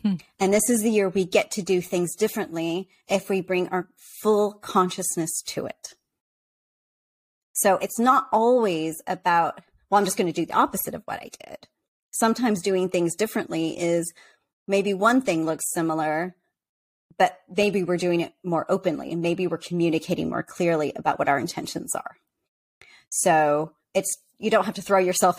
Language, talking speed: English, 170 wpm